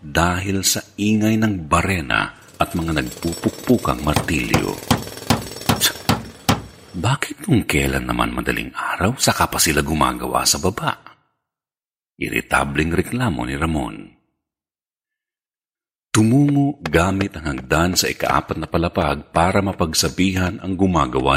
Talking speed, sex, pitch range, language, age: 105 wpm, male, 80-130 Hz, Filipino, 50-69